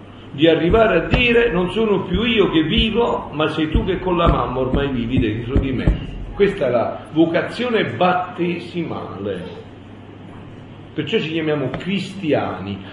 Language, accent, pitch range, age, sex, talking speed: Italian, native, 135-190 Hz, 50-69, male, 145 wpm